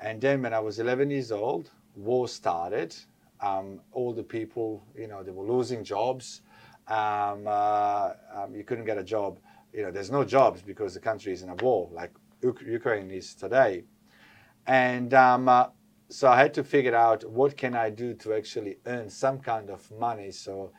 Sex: male